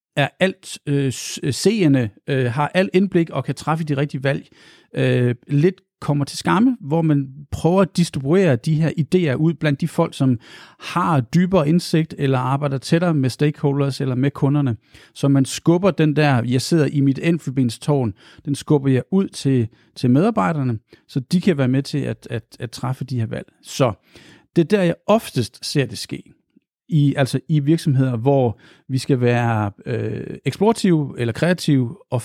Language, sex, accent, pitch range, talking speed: Danish, male, native, 130-170 Hz, 170 wpm